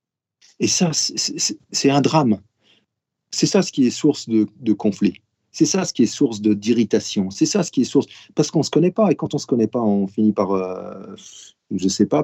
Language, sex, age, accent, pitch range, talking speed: French, male, 40-59, French, 110-175 Hz, 245 wpm